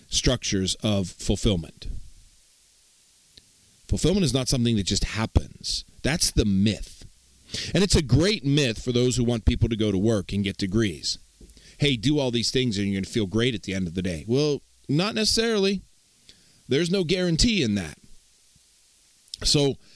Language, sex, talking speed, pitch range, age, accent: English, male, 170 wpm, 100-150 Hz, 40-59, American